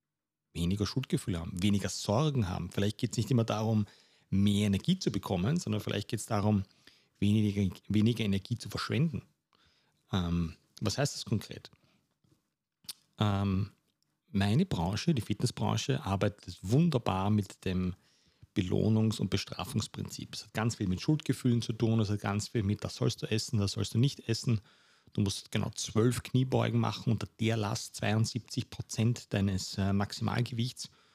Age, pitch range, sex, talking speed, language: 40-59, 100-120 Hz, male, 150 wpm, German